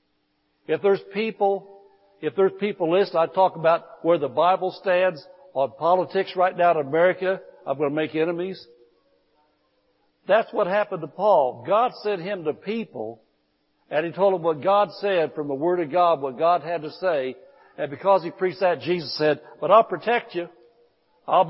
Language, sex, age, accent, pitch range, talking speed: English, male, 60-79, American, 165-210 Hz, 180 wpm